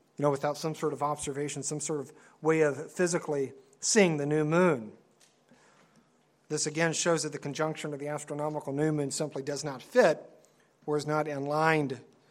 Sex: male